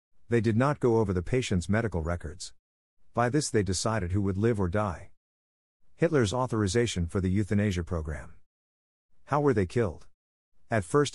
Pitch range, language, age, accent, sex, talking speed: 85-115 Hz, English, 50-69, American, male, 160 wpm